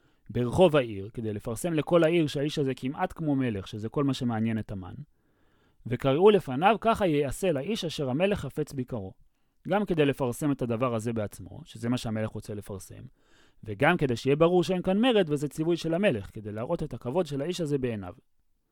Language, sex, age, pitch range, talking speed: Hebrew, male, 30-49, 115-155 Hz, 185 wpm